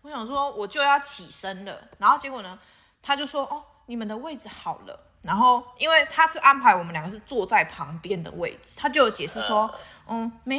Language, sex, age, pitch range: Chinese, female, 20-39, 205-280 Hz